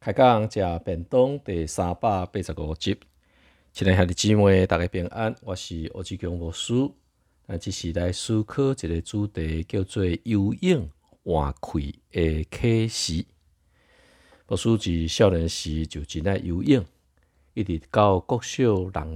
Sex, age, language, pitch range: male, 50-69, Chinese, 80-105 Hz